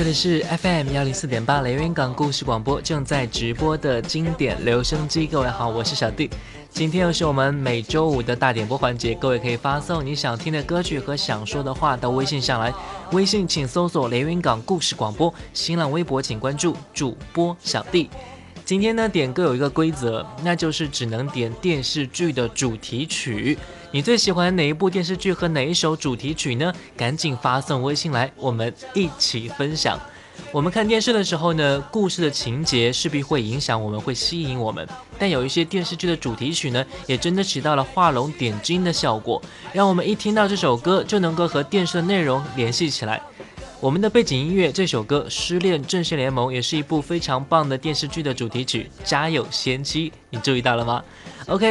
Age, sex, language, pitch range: 20-39, male, Chinese, 130-175 Hz